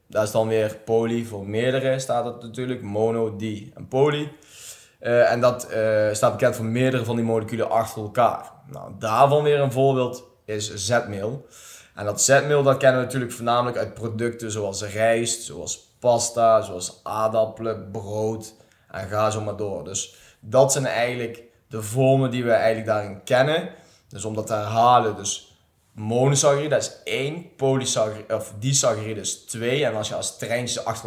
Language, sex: Dutch, male